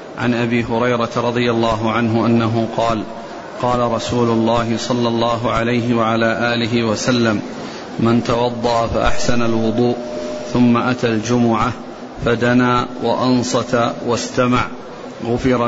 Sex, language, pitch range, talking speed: male, Arabic, 115-125 Hz, 105 wpm